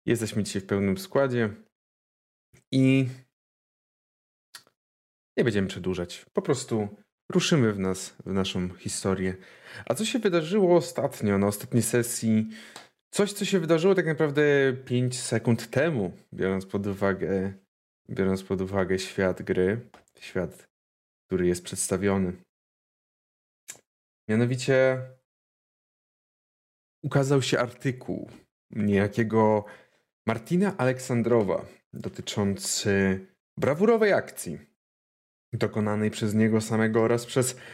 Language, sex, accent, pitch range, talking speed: Polish, male, native, 95-130 Hz, 100 wpm